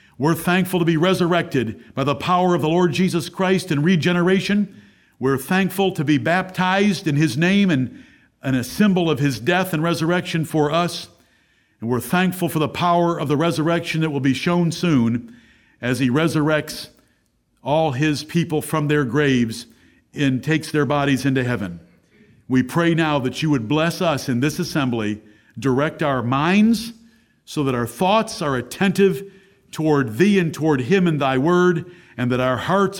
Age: 50-69